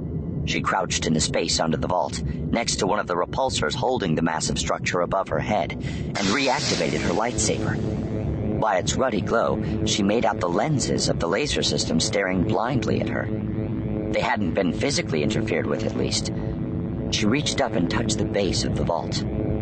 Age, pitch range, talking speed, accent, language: 50-69, 100-110 Hz, 180 wpm, American, English